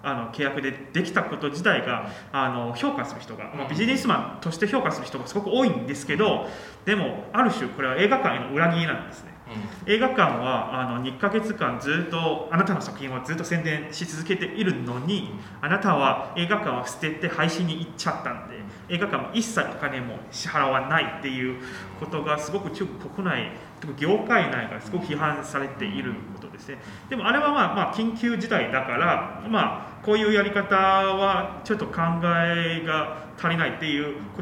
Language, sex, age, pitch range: Japanese, male, 20-39, 140-200 Hz